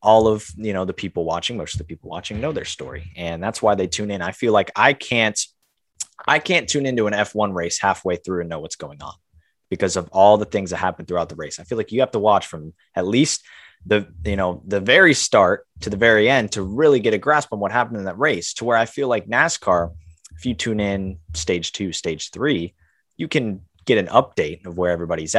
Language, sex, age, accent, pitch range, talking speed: English, male, 20-39, American, 85-105 Hz, 245 wpm